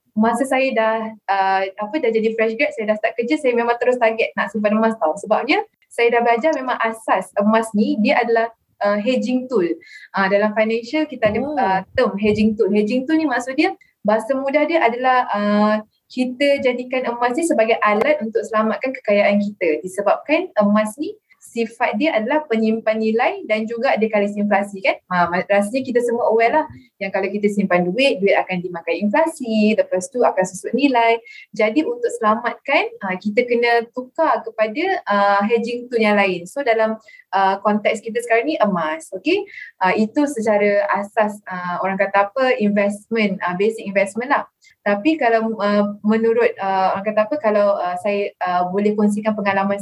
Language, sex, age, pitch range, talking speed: Malay, female, 20-39, 205-255 Hz, 160 wpm